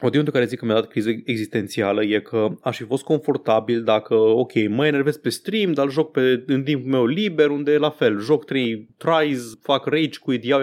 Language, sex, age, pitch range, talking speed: Romanian, male, 20-39, 125-195 Hz, 215 wpm